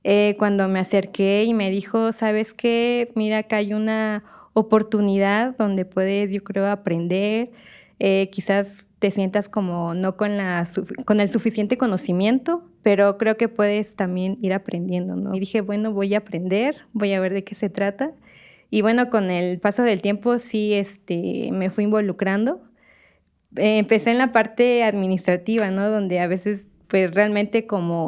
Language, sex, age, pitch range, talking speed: Spanish, female, 20-39, 195-220 Hz, 165 wpm